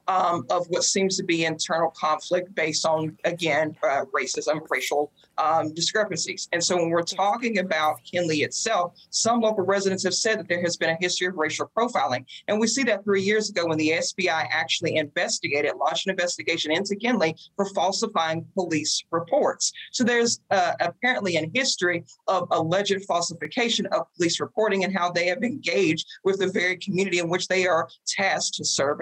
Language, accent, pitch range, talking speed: English, American, 160-200 Hz, 180 wpm